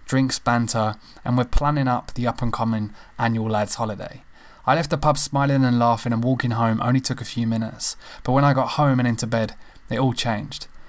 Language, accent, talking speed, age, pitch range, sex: English, British, 215 wpm, 20-39, 115-130 Hz, male